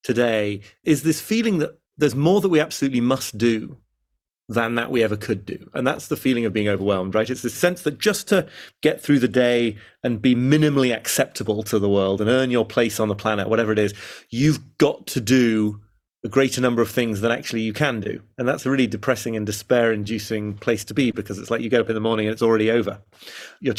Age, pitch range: 30-49, 105-125 Hz